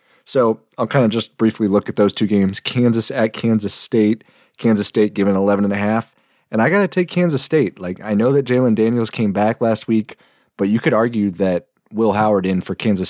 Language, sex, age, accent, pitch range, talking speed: English, male, 30-49, American, 95-115 Hz, 210 wpm